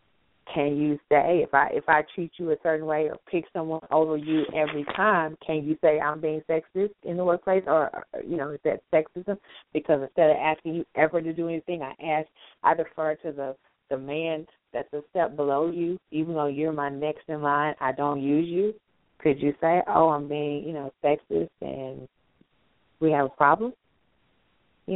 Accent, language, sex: American, English, female